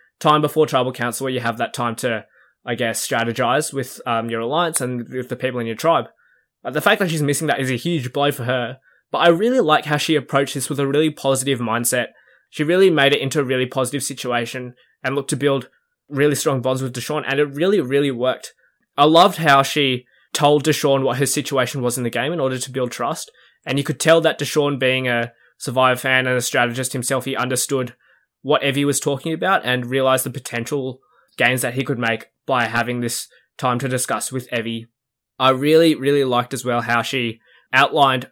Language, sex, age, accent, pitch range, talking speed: English, male, 20-39, Australian, 120-145 Hz, 215 wpm